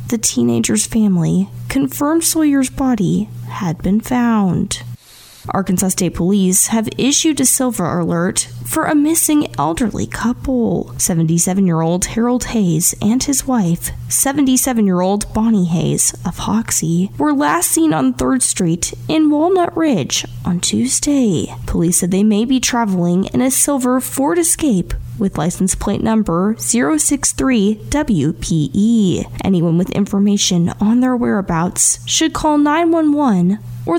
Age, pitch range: 10-29, 175-260 Hz